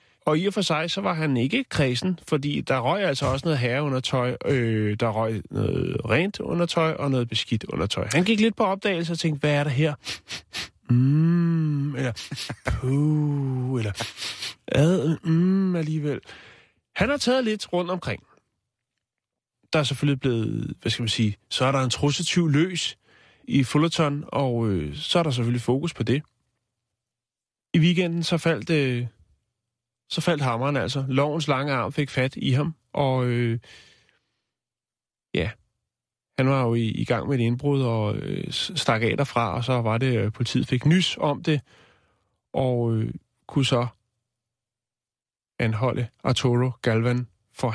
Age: 30-49